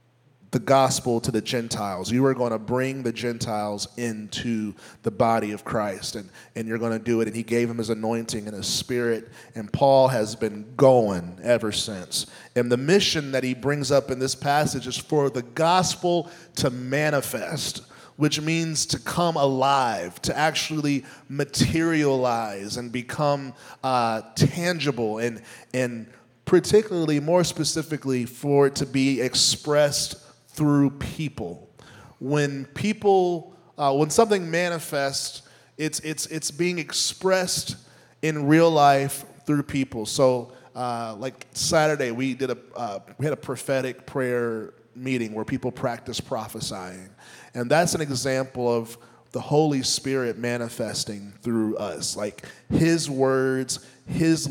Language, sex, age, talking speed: English, male, 30-49, 140 wpm